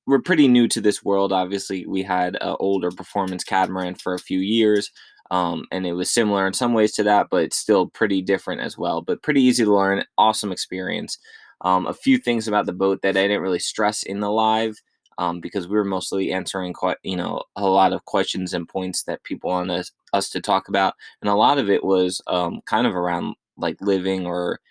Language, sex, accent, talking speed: English, male, American, 225 wpm